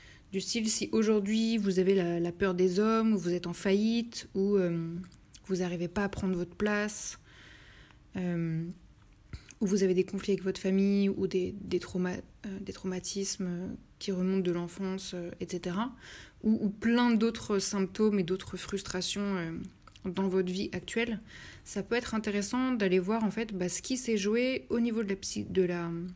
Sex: female